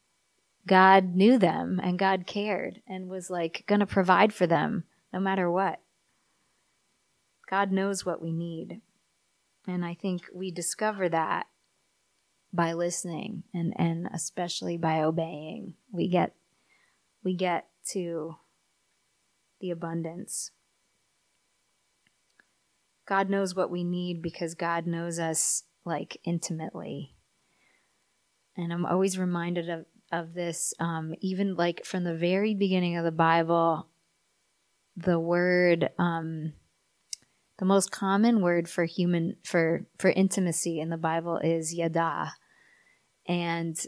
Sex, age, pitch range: female, 30-49, 170-190 Hz